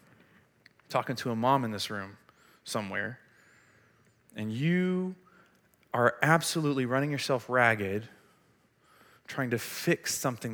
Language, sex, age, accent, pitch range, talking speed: English, male, 30-49, American, 130-195 Hz, 110 wpm